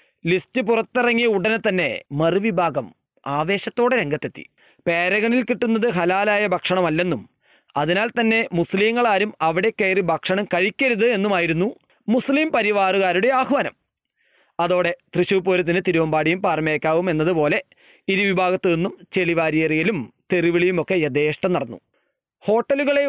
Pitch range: 170-215 Hz